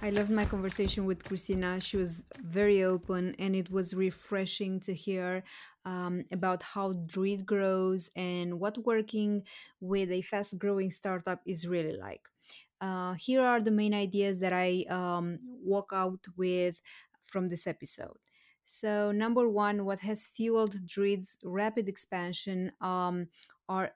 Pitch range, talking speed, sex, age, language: 180-200 Hz, 145 wpm, female, 20-39, English